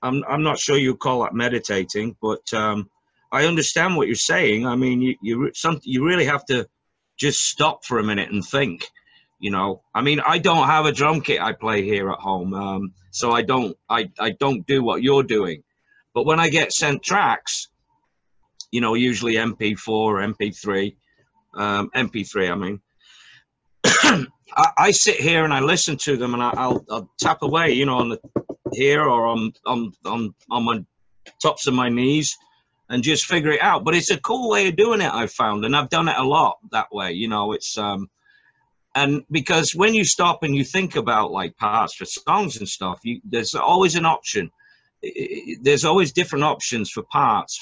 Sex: male